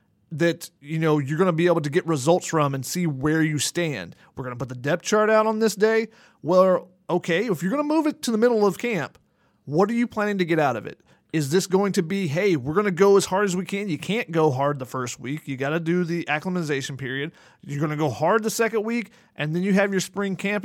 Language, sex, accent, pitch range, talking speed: English, male, American, 155-205 Hz, 275 wpm